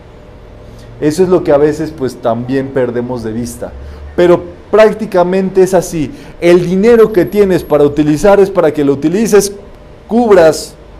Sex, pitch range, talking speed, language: male, 125-175 Hz, 145 wpm, Spanish